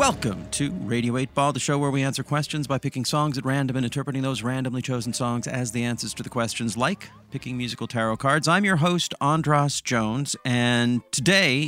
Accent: American